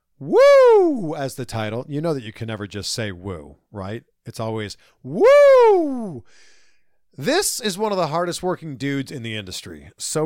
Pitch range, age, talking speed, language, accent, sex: 135-205 Hz, 40-59, 170 wpm, English, American, male